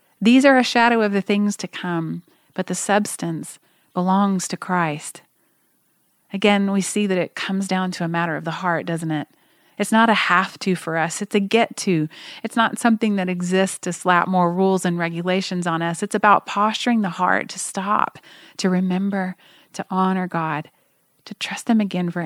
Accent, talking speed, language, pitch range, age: American, 185 wpm, English, 175-210 Hz, 30-49